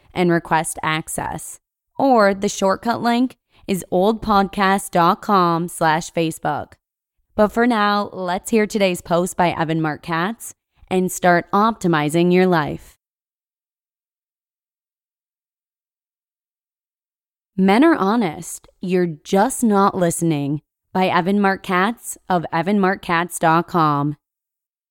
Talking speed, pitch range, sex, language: 95 wpm, 170-210 Hz, female, English